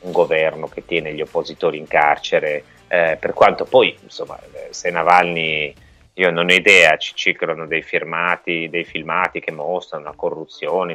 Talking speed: 155 wpm